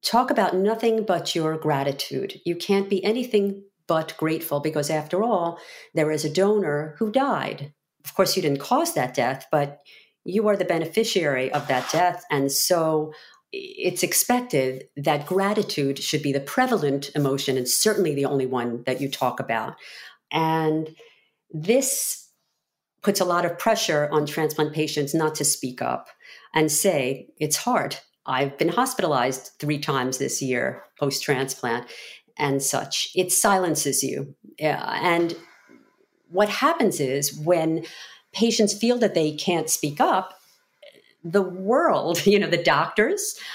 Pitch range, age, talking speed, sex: 145-215 Hz, 50-69, 145 wpm, female